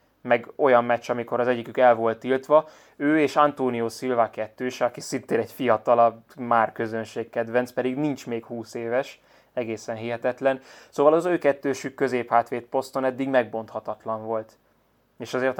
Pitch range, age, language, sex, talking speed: 115-135 Hz, 20-39, Hungarian, male, 145 wpm